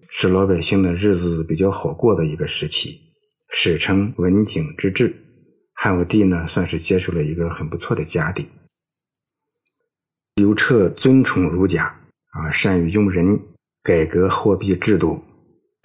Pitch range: 85-100 Hz